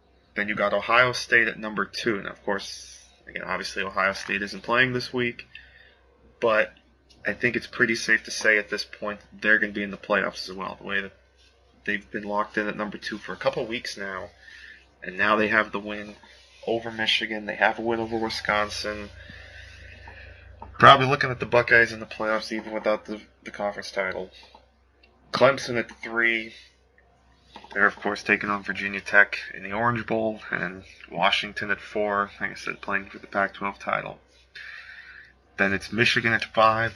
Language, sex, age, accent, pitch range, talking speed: English, male, 20-39, American, 100-110 Hz, 185 wpm